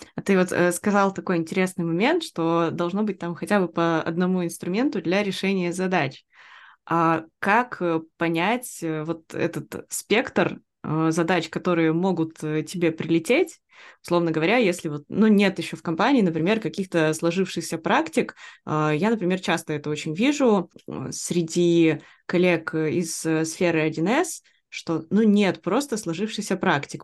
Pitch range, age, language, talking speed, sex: 165-200 Hz, 20-39, Russian, 135 wpm, female